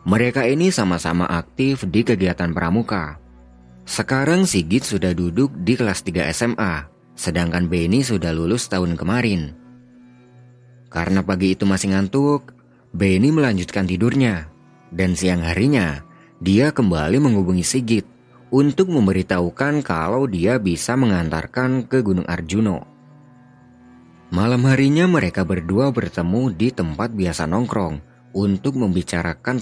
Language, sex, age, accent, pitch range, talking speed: Indonesian, male, 30-49, native, 85-125 Hz, 115 wpm